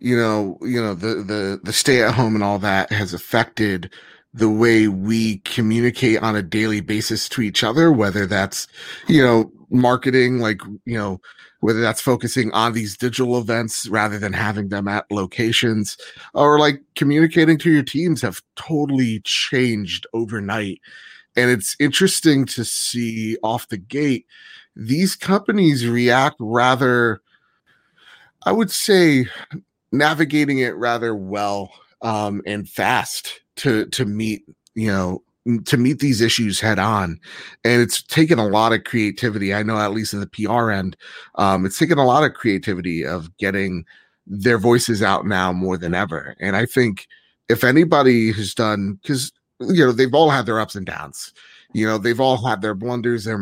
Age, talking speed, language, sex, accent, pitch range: 30-49, 165 wpm, English, male, American, 105-125 Hz